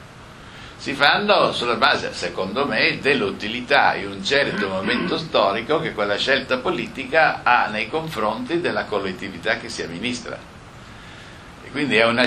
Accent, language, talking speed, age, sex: native, Italian, 135 wpm, 60-79, male